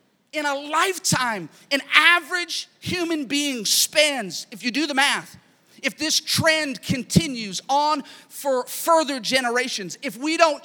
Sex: male